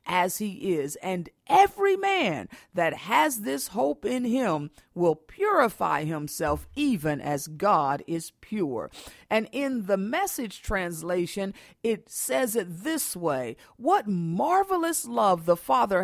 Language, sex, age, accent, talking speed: English, female, 50-69, American, 130 wpm